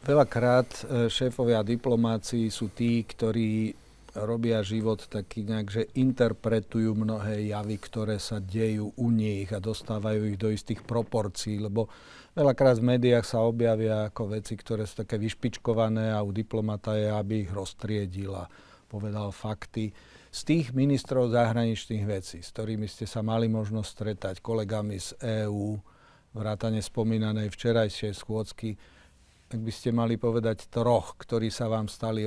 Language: Slovak